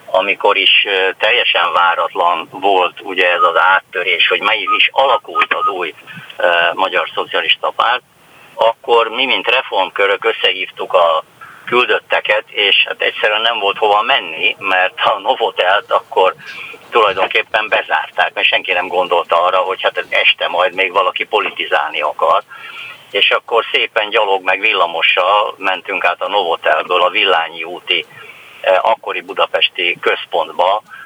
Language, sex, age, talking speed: Hungarian, male, 50-69, 130 wpm